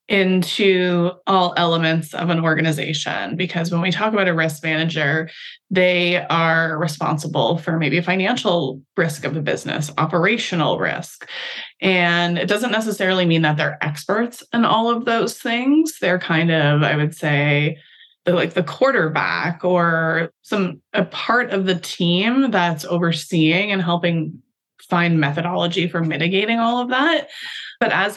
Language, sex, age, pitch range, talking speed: English, female, 20-39, 165-215 Hz, 145 wpm